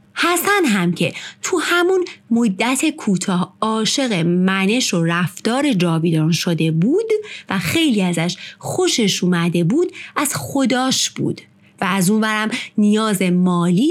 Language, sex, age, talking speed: Persian, female, 30-49, 120 wpm